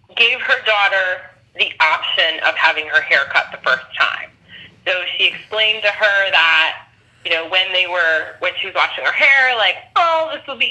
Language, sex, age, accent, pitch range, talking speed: English, female, 20-39, American, 160-210 Hz, 195 wpm